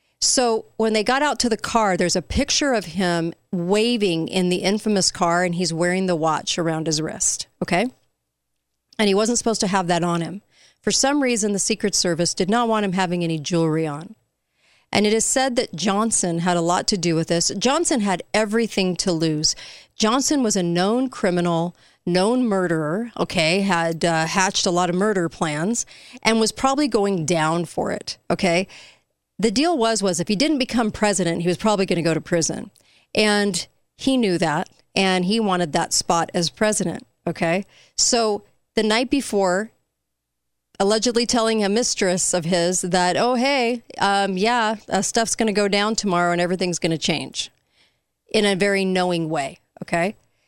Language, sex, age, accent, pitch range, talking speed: English, female, 40-59, American, 170-220 Hz, 185 wpm